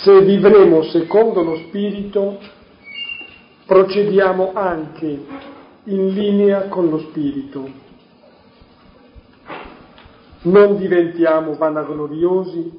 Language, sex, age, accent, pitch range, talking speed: Italian, male, 50-69, native, 155-195 Hz, 70 wpm